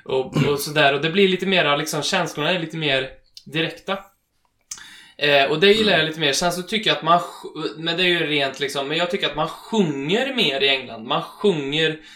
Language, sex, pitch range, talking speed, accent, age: Swedish, male, 145-180 Hz, 220 wpm, native, 20-39